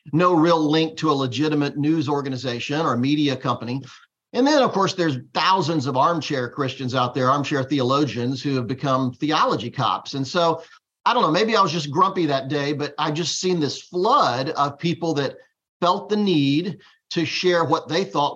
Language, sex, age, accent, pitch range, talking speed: English, male, 50-69, American, 140-185 Hz, 190 wpm